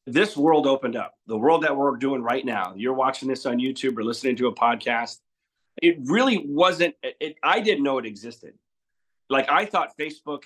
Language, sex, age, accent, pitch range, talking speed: English, male, 30-49, American, 125-150 Hz, 200 wpm